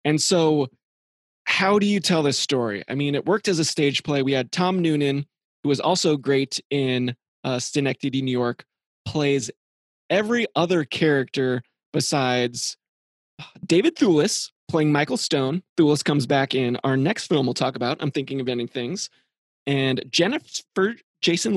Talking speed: 160 wpm